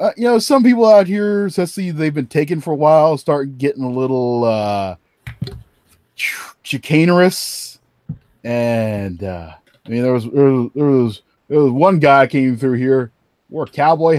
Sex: male